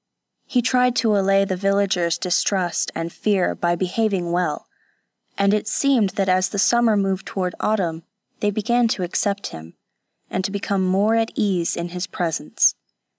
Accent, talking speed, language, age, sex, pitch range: American, 165 wpm, English, 20-39, female, 170-215 Hz